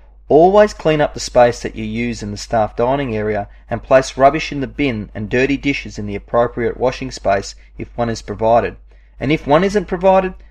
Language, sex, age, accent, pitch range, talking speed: English, male, 30-49, Australian, 105-135 Hz, 205 wpm